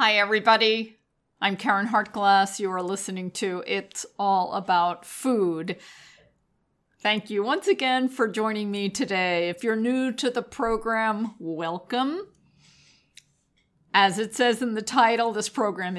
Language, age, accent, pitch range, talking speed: English, 50-69, American, 175-225 Hz, 135 wpm